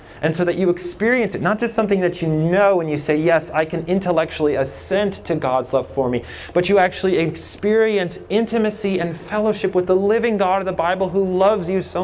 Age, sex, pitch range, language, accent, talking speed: 30-49, male, 150-190 Hz, English, American, 215 wpm